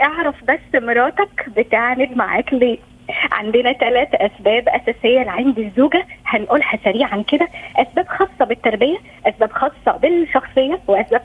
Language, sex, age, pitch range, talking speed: Arabic, female, 20-39, 230-300 Hz, 115 wpm